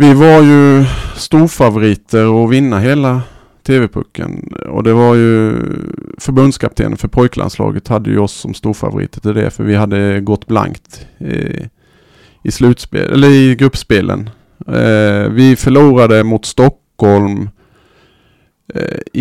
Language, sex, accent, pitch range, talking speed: Swedish, male, Norwegian, 105-130 Hz, 120 wpm